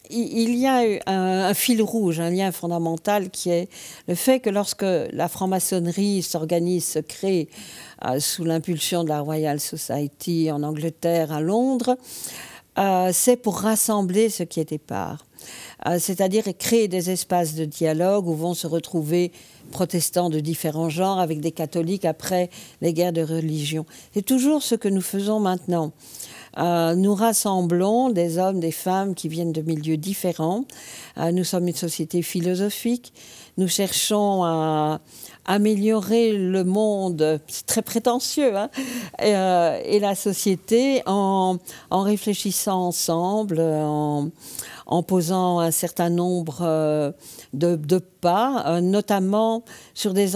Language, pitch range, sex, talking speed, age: French, 165-205 Hz, female, 140 wpm, 50-69